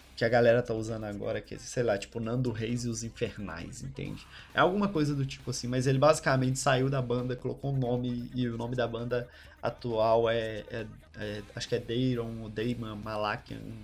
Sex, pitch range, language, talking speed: male, 115-145 Hz, Portuguese, 205 wpm